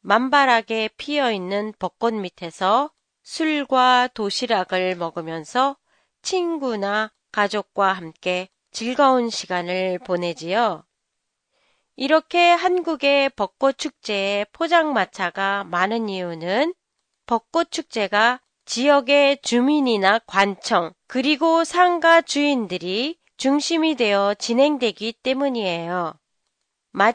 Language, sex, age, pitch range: Japanese, female, 40-59, 195-290 Hz